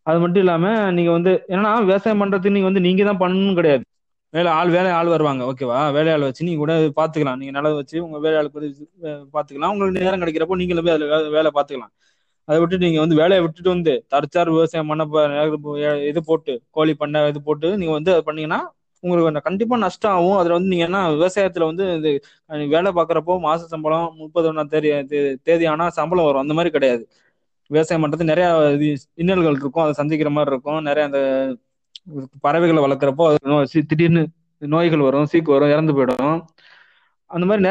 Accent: native